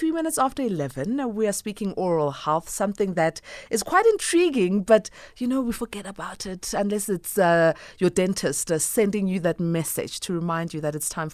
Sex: female